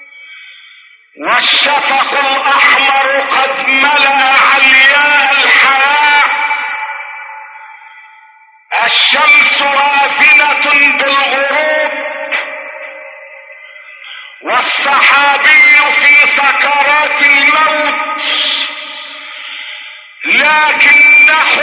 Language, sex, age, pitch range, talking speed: Arabic, male, 50-69, 295-330 Hz, 40 wpm